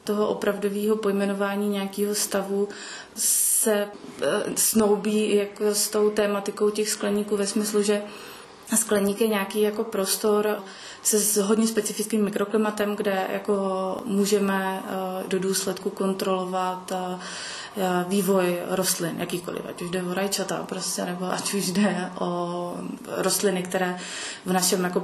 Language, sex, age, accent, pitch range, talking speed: Czech, female, 20-39, native, 185-205 Hz, 120 wpm